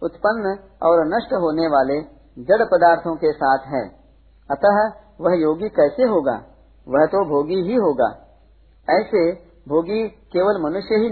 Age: 50-69